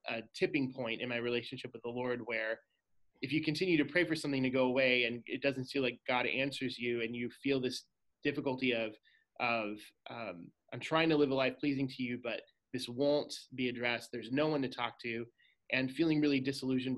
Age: 20-39